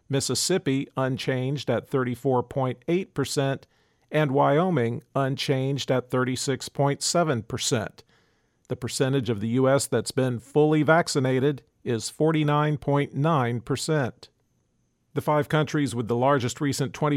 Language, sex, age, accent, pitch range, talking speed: English, male, 50-69, American, 125-150 Hz, 95 wpm